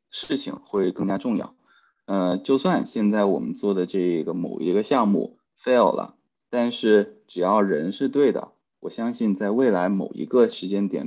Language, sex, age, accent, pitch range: Chinese, male, 20-39, native, 95-105 Hz